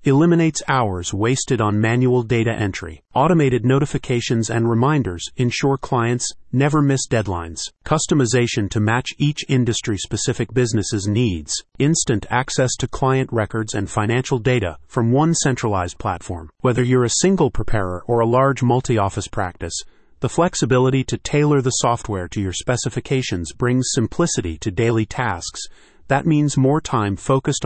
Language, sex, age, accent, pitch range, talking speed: English, male, 30-49, American, 105-130 Hz, 140 wpm